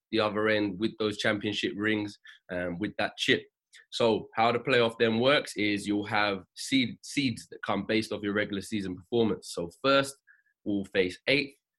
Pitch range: 105-125 Hz